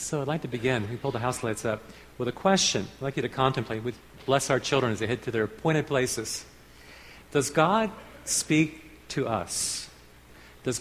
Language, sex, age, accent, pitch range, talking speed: English, male, 50-69, American, 115-160 Hz, 200 wpm